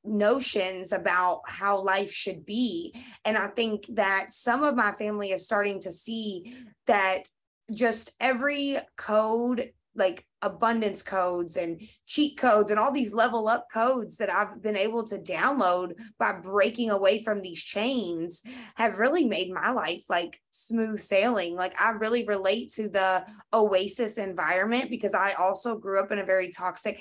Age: 20-39